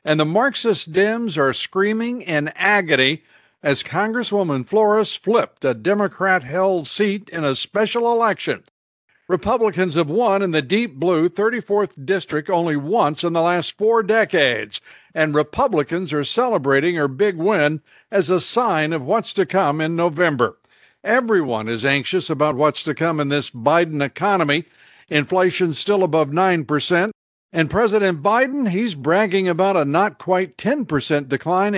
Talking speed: 140 wpm